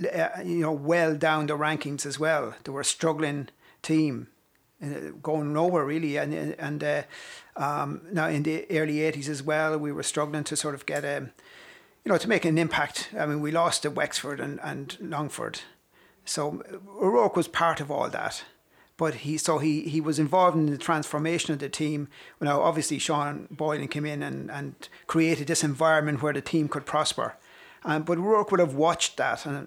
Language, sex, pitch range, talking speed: English, male, 145-160 Hz, 195 wpm